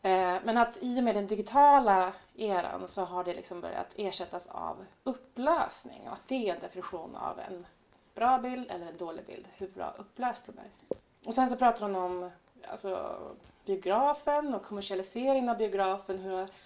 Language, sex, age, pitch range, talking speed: Swedish, female, 30-49, 180-240 Hz, 175 wpm